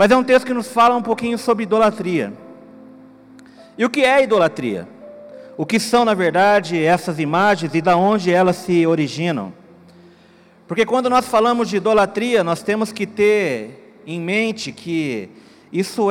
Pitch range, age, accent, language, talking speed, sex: 180-225 Hz, 40-59, Brazilian, Portuguese, 160 wpm, male